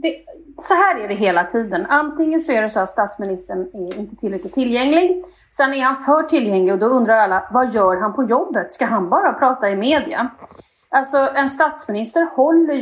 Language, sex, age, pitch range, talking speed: English, female, 30-49, 215-305 Hz, 200 wpm